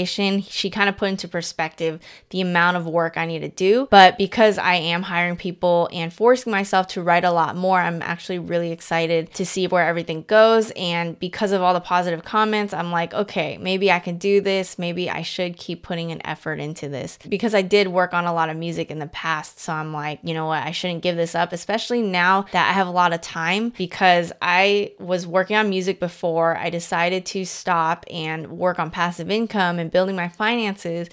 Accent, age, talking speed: American, 20-39, 220 wpm